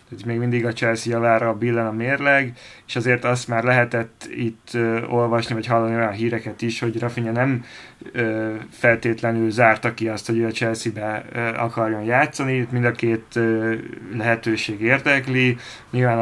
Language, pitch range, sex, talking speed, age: Hungarian, 115-125 Hz, male, 150 wpm, 20-39